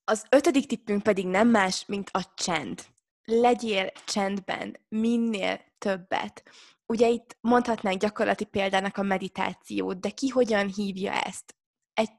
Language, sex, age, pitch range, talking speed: Hungarian, female, 20-39, 190-230 Hz, 130 wpm